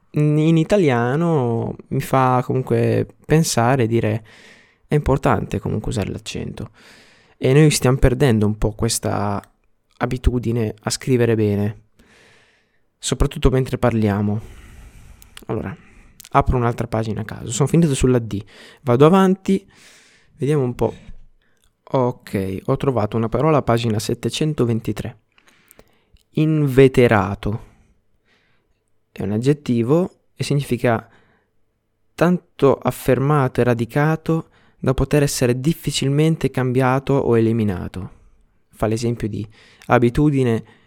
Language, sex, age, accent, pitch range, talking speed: Italian, male, 20-39, native, 110-140 Hz, 105 wpm